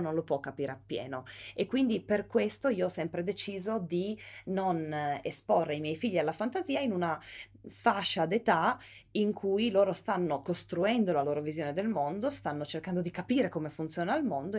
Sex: female